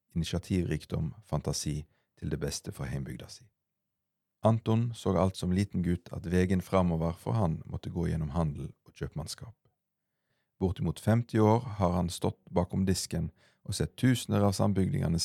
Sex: male